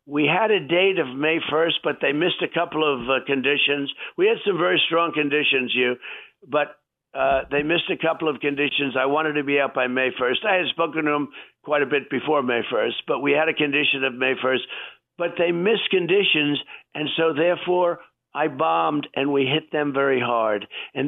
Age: 60-79